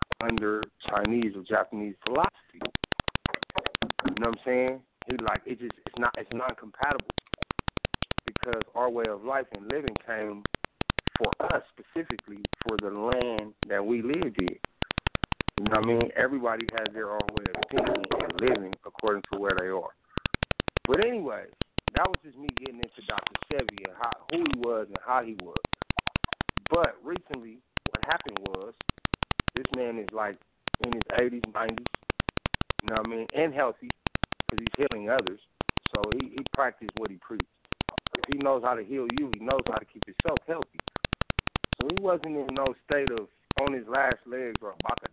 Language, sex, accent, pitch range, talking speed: English, male, American, 110-130 Hz, 180 wpm